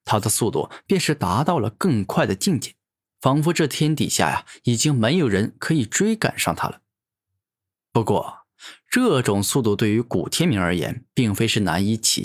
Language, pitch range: Chinese, 105-150 Hz